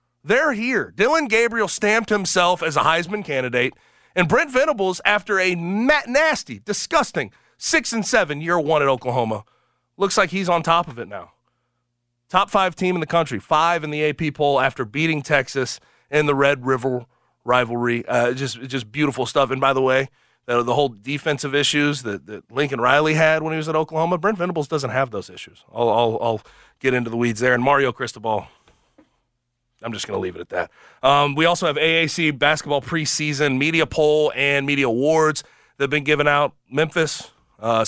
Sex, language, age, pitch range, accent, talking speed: male, English, 30-49, 135-175 Hz, American, 190 wpm